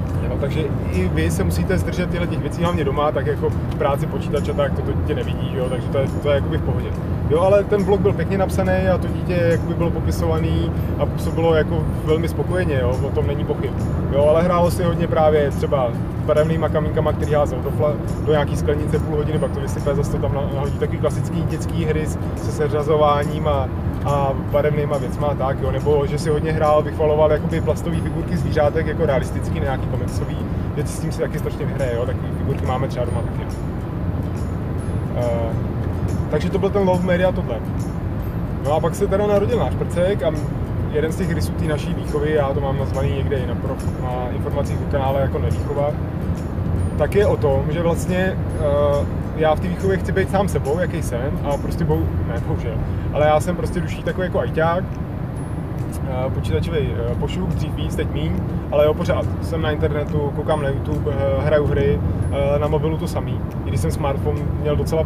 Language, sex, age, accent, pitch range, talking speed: Czech, male, 30-49, native, 90-150 Hz, 190 wpm